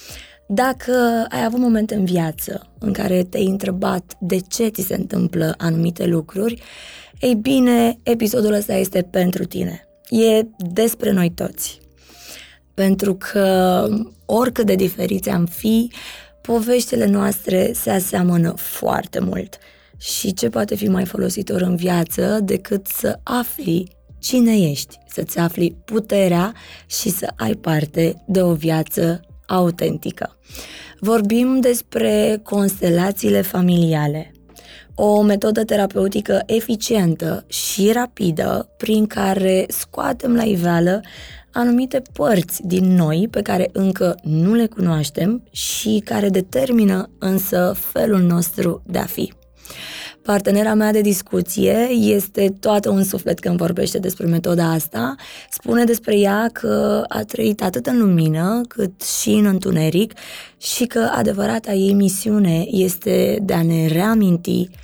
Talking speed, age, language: 125 wpm, 20-39, Romanian